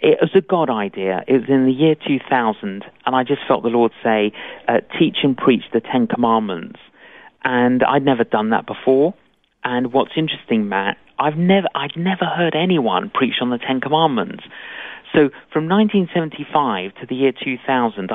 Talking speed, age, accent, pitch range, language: 175 wpm, 40-59, British, 120-150 Hz, English